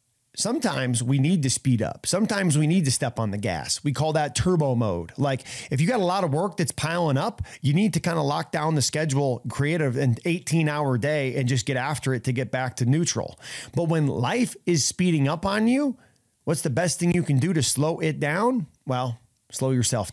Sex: male